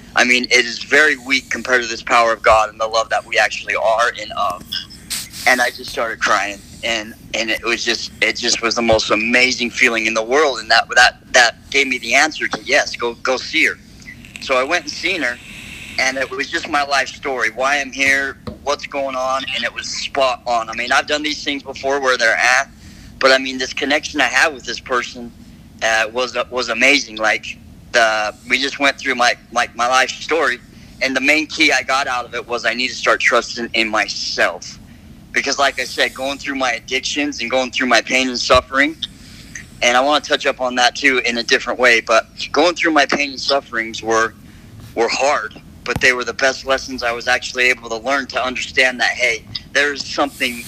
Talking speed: 220 wpm